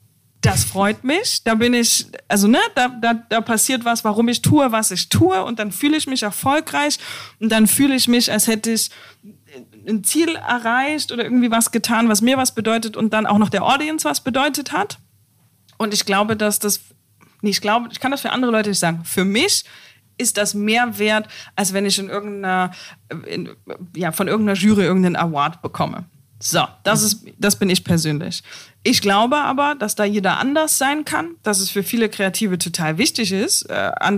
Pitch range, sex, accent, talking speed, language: 170-220 Hz, female, German, 200 wpm, German